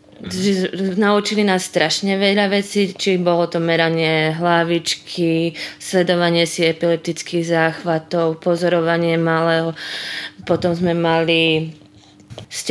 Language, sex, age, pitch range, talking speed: Slovak, female, 20-39, 165-195 Hz, 100 wpm